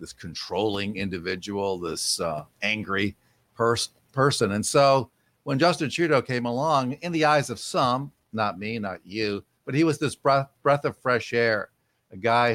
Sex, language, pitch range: male, English, 110-140 Hz